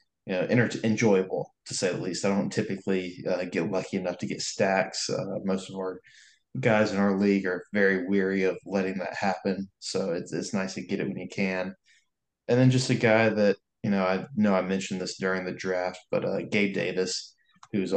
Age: 20-39